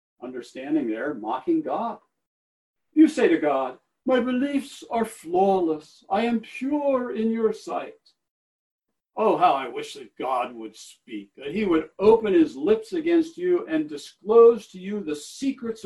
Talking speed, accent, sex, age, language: 150 wpm, American, male, 60-79, English